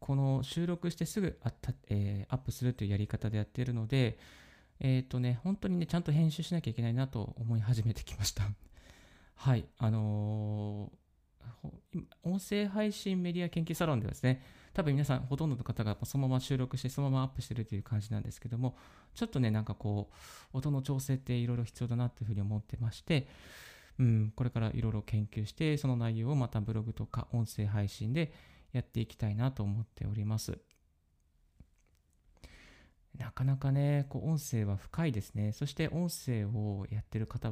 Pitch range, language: 105-135 Hz, Japanese